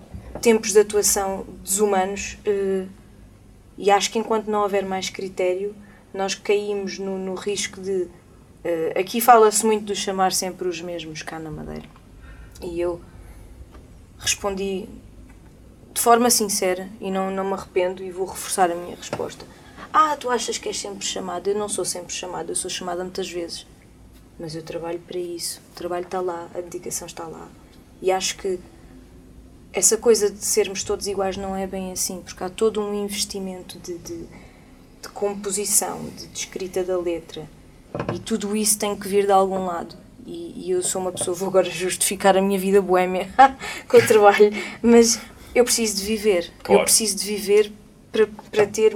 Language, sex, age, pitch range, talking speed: Portuguese, female, 20-39, 180-210 Hz, 175 wpm